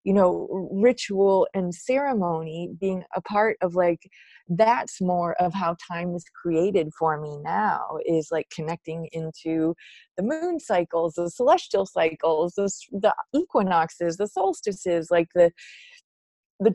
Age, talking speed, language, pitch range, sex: 20-39, 135 wpm, English, 175-230 Hz, female